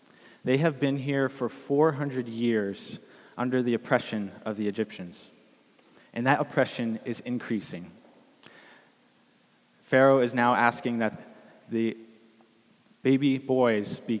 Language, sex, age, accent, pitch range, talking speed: English, male, 20-39, American, 110-135 Hz, 115 wpm